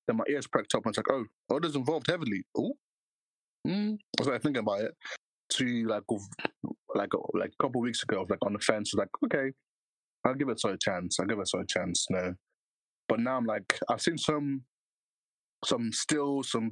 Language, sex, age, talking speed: English, male, 20-39, 225 wpm